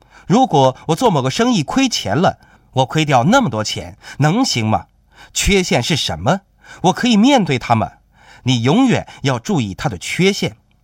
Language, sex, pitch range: Chinese, male, 125-210 Hz